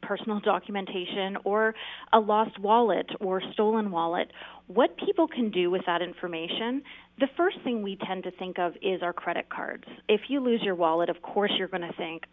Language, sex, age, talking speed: English, female, 30-49, 190 wpm